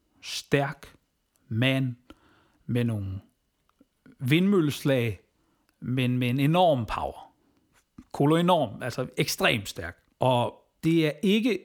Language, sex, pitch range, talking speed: Danish, male, 125-155 Hz, 100 wpm